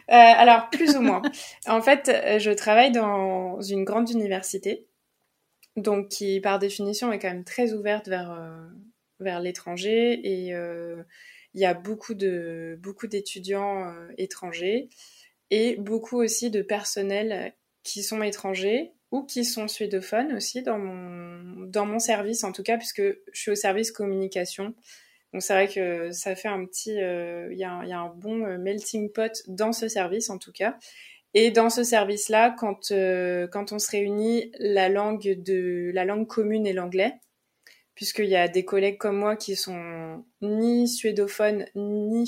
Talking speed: 165 wpm